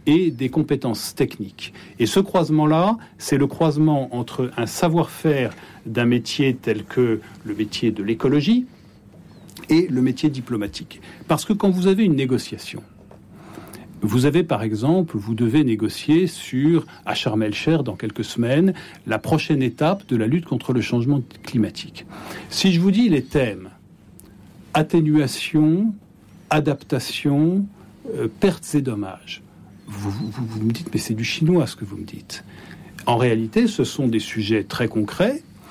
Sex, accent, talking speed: male, French, 150 wpm